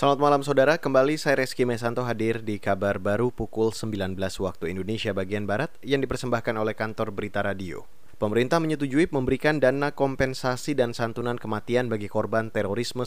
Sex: male